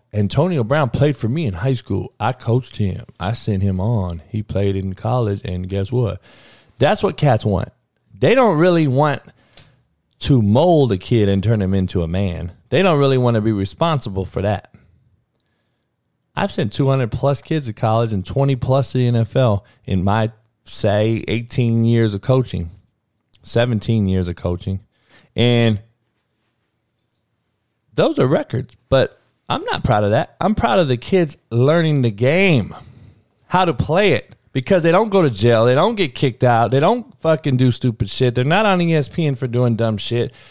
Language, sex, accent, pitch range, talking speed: English, male, American, 105-145 Hz, 175 wpm